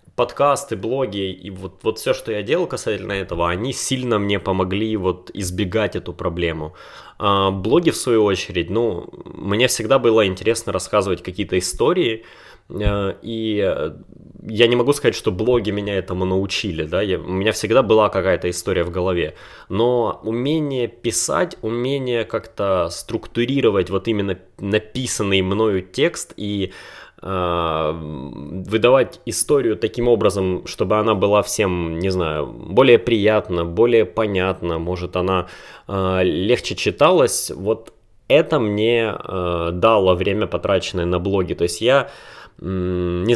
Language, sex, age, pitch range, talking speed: Russian, male, 20-39, 90-110 Hz, 125 wpm